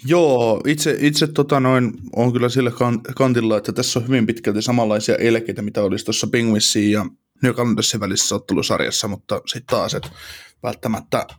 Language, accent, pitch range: Finnish, native, 105-125 Hz